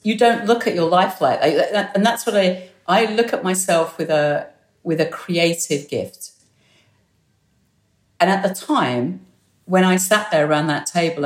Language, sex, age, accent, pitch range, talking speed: English, female, 50-69, British, 145-185 Hz, 175 wpm